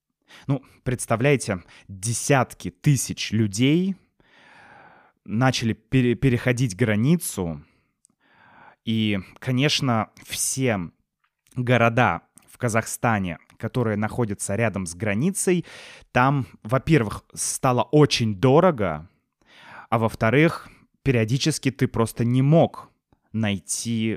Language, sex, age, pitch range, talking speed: Russian, male, 20-39, 100-135 Hz, 80 wpm